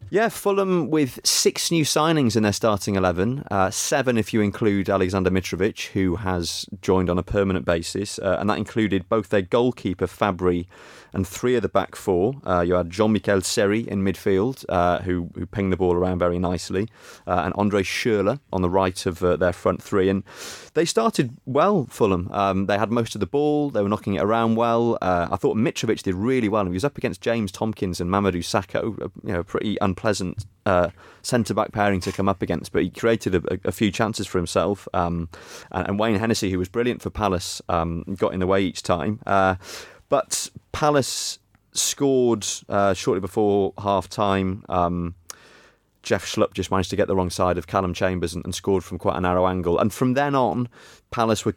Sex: male